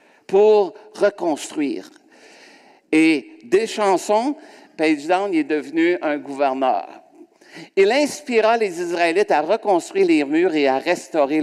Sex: male